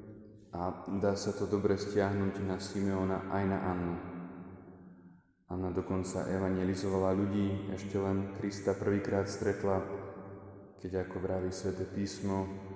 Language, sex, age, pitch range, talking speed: Slovak, male, 20-39, 95-100 Hz, 120 wpm